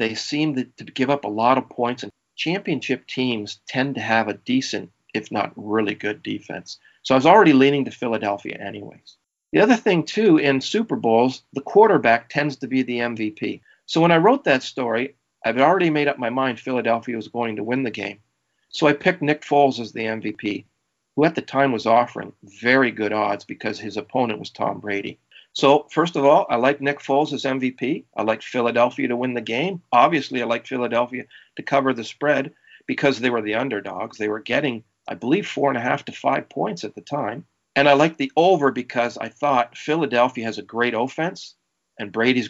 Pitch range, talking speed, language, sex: 115-145 Hz, 205 wpm, English, male